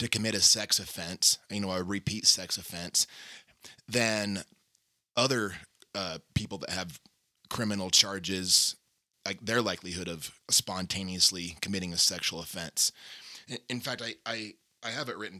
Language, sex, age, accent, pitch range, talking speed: English, male, 30-49, American, 95-110 Hz, 140 wpm